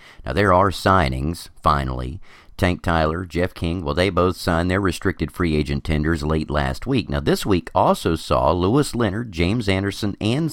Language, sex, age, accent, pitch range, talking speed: English, male, 40-59, American, 80-115 Hz, 175 wpm